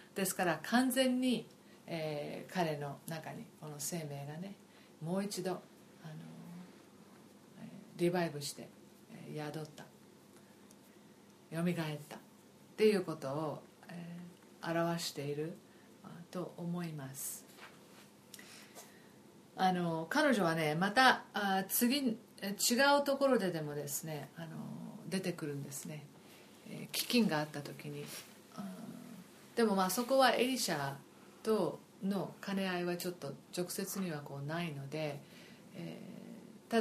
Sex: female